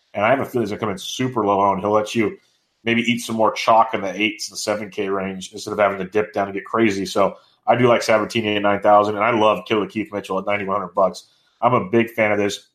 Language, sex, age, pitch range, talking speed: English, male, 30-49, 105-115 Hz, 280 wpm